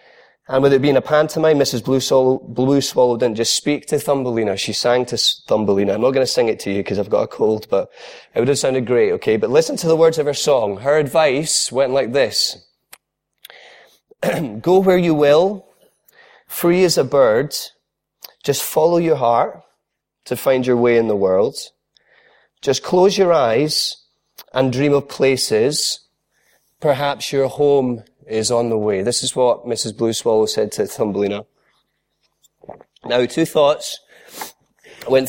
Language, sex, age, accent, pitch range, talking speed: English, male, 30-49, British, 115-155 Hz, 170 wpm